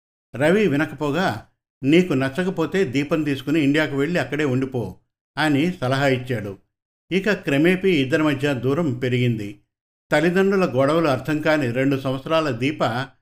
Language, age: Telugu, 50-69